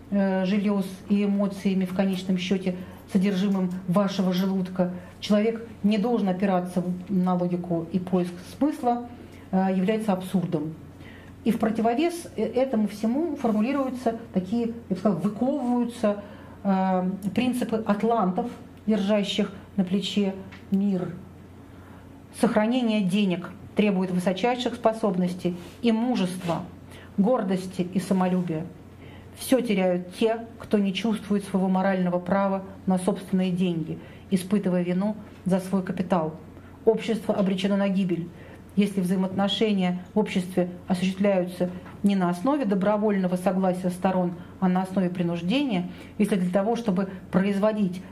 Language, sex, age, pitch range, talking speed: Russian, female, 40-59, 180-215 Hz, 110 wpm